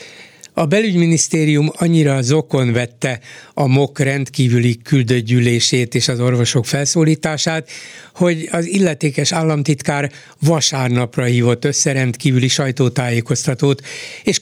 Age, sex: 60-79, male